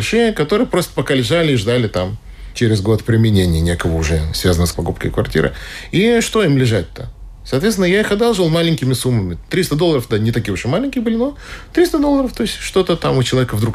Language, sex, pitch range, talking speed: Russian, male, 105-155 Hz, 195 wpm